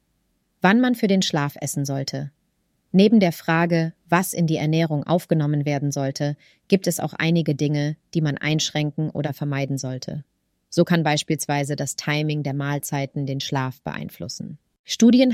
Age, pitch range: 30-49, 150-175 Hz